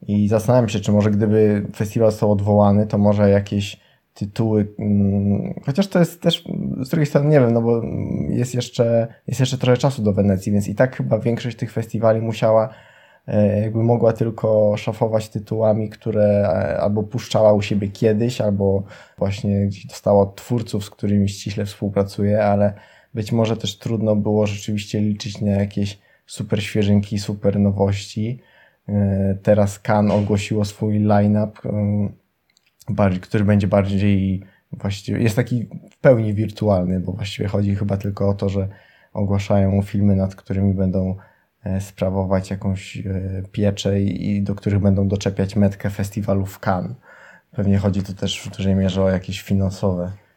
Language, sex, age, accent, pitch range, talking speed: Polish, male, 20-39, native, 100-115 Hz, 145 wpm